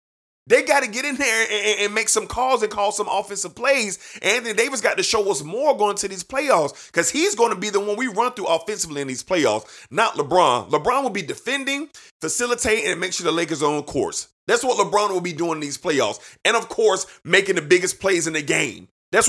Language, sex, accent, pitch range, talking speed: English, male, American, 200-275 Hz, 245 wpm